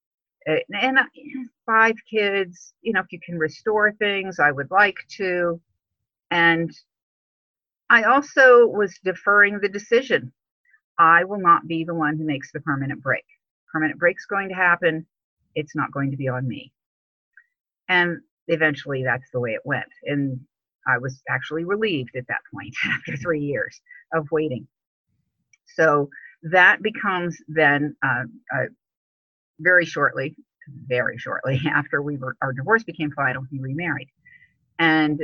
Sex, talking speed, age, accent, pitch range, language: female, 145 wpm, 50-69, American, 140-185 Hz, English